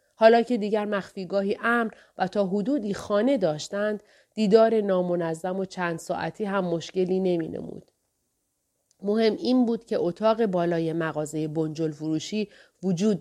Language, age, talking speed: Persian, 30-49, 130 wpm